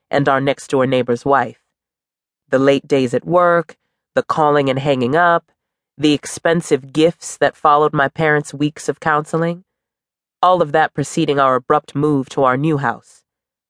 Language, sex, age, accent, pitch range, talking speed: English, female, 30-49, American, 130-165 Hz, 155 wpm